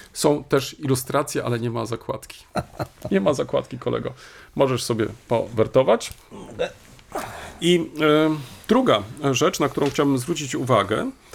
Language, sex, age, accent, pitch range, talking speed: Polish, male, 40-59, native, 105-140 Hz, 115 wpm